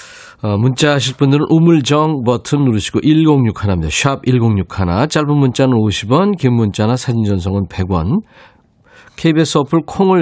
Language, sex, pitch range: Korean, male, 100-145 Hz